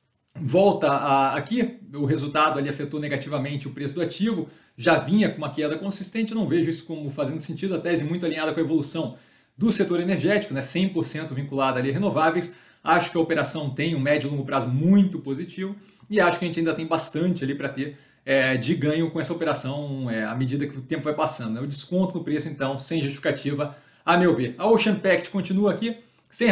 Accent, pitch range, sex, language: Brazilian, 145-175 Hz, male, Portuguese